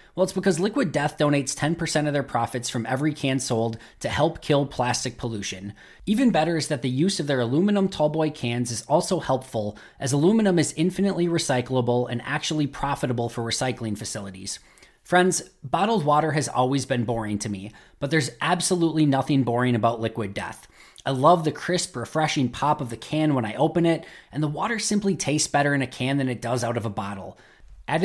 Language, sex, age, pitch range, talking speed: English, male, 20-39, 120-155 Hz, 195 wpm